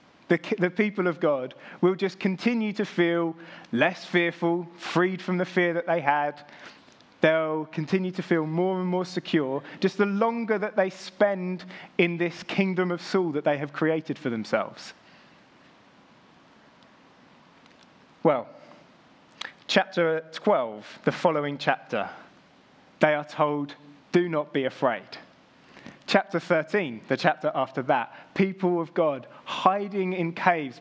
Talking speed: 135 wpm